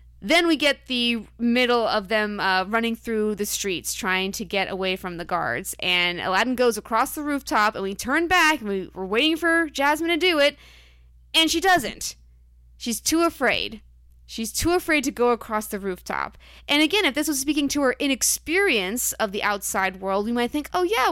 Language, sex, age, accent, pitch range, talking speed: English, female, 20-39, American, 195-280 Hz, 195 wpm